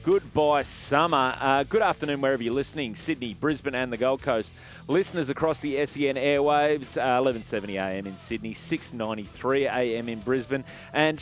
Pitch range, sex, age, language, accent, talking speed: 105-140 Hz, male, 30-49, English, Australian, 155 wpm